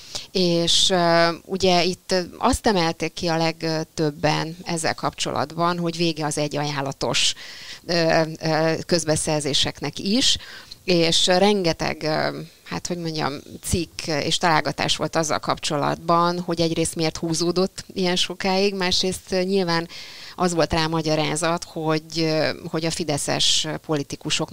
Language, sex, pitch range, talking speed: Hungarian, female, 150-175 Hz, 110 wpm